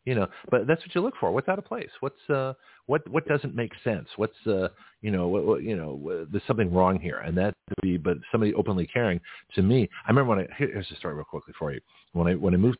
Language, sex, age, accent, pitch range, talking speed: English, male, 40-59, American, 90-125 Hz, 270 wpm